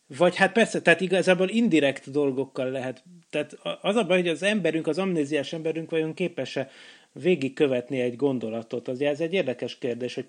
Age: 30-49